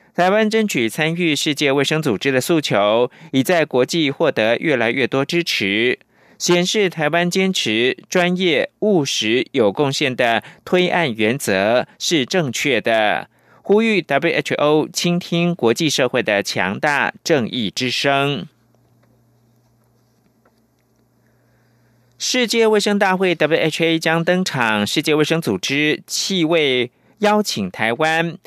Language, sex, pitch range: German, male, 125-175 Hz